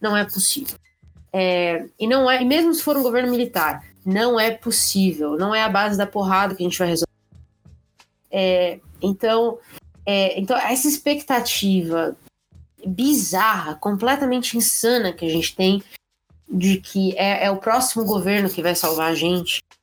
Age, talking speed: 20-39, 160 wpm